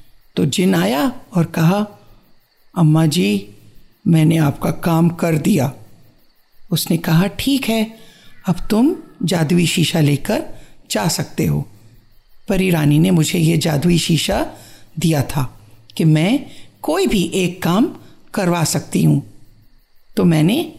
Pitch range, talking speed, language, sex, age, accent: 155-245 Hz, 125 wpm, Hindi, female, 50-69, native